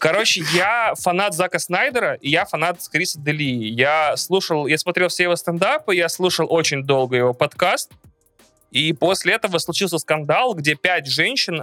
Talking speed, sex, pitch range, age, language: 155 wpm, male, 140-175 Hz, 20-39, Russian